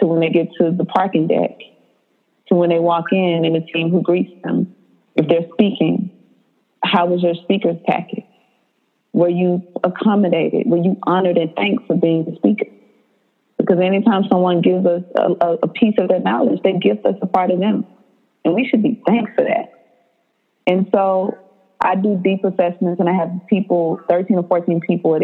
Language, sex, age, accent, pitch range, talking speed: English, female, 30-49, American, 165-190 Hz, 185 wpm